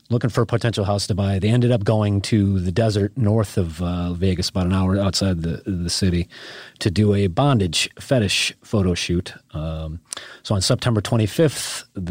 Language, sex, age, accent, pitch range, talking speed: English, male, 30-49, American, 85-105 Hz, 185 wpm